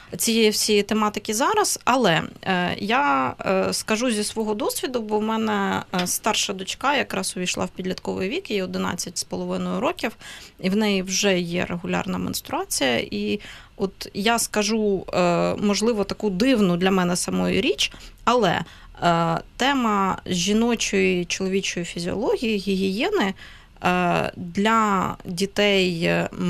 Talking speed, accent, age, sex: 125 wpm, native, 20-39, female